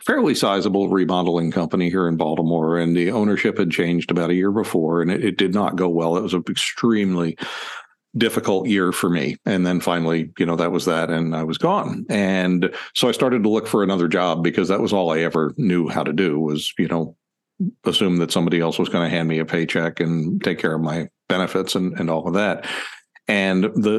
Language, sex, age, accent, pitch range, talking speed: English, male, 50-69, American, 85-95 Hz, 225 wpm